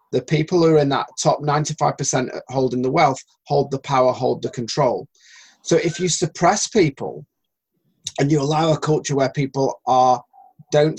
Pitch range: 135-175 Hz